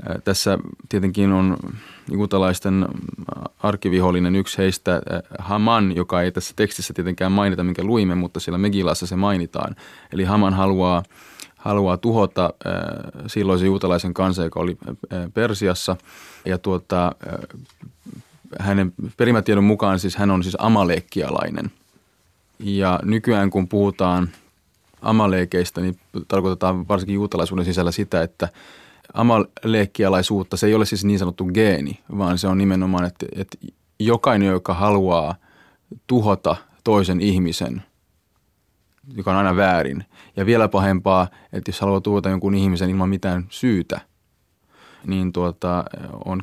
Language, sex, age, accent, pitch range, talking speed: Finnish, male, 30-49, native, 90-100 Hz, 120 wpm